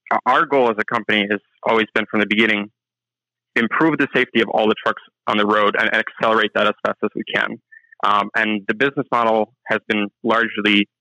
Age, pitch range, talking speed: 20-39, 105-120 Hz, 205 wpm